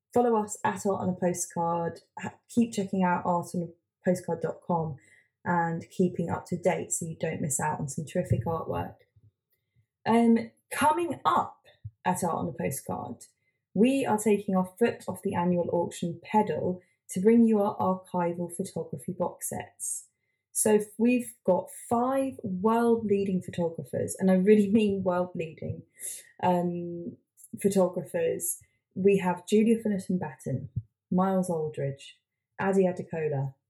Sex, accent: female, British